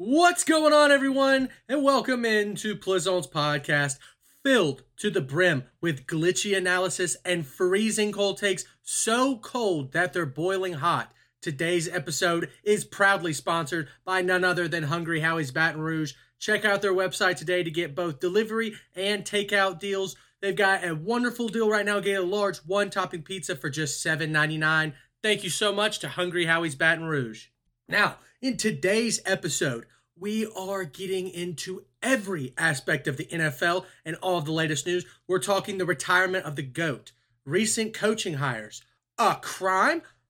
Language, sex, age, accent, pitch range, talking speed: English, male, 30-49, American, 165-215 Hz, 160 wpm